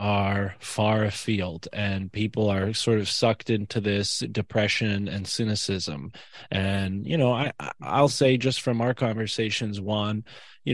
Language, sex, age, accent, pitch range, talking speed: English, male, 20-39, American, 100-115 Hz, 145 wpm